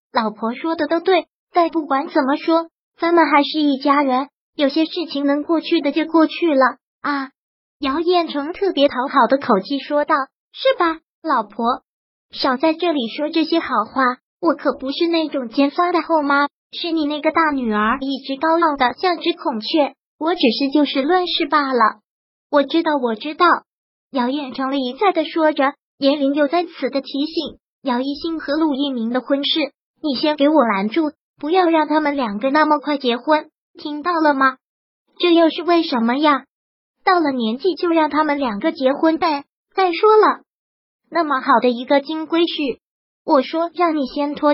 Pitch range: 275-330 Hz